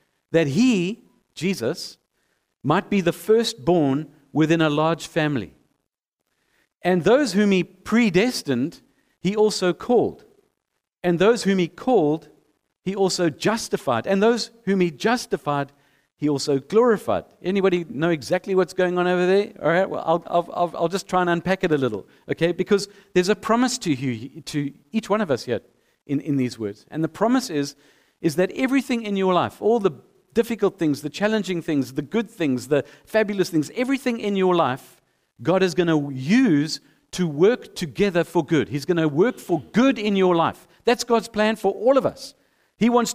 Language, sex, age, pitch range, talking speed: English, male, 50-69, 160-220 Hz, 180 wpm